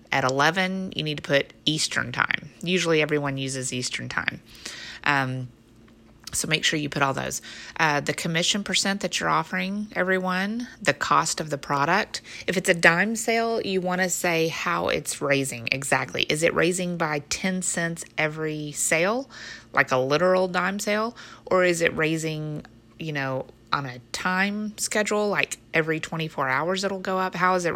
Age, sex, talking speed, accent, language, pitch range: 30-49, female, 175 wpm, American, English, 140-185 Hz